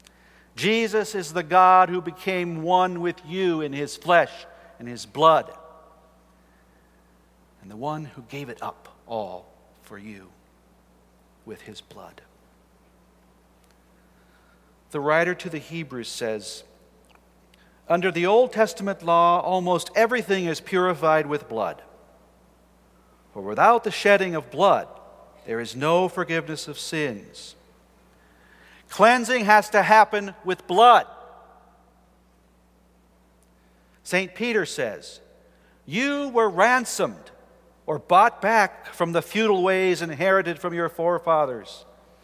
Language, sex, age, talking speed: English, male, 50-69, 115 wpm